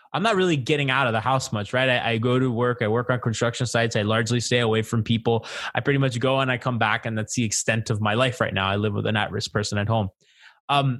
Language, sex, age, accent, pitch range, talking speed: English, male, 20-39, American, 115-140 Hz, 290 wpm